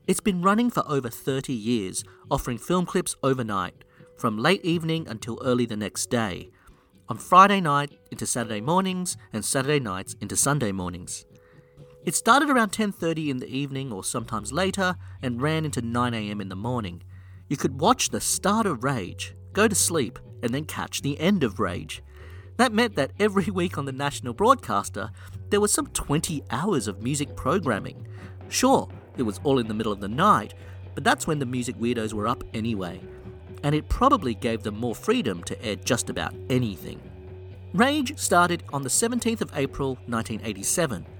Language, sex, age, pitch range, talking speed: English, male, 40-59, 95-155 Hz, 175 wpm